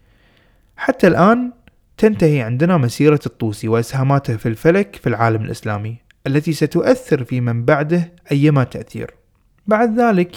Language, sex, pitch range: Arabic, male, 125-175 Hz